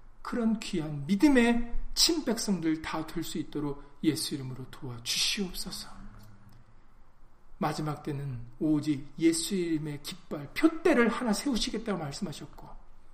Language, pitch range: Korean, 140-200 Hz